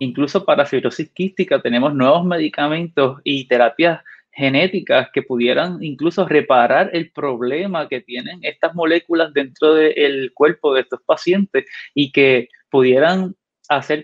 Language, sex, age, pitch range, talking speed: Spanish, male, 20-39, 135-165 Hz, 135 wpm